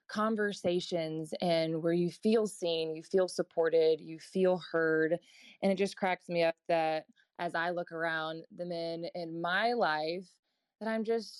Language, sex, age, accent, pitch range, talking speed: English, female, 20-39, American, 170-210 Hz, 165 wpm